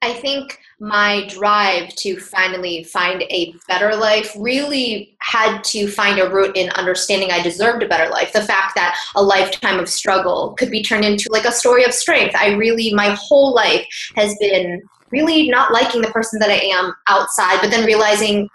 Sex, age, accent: female, 20-39, American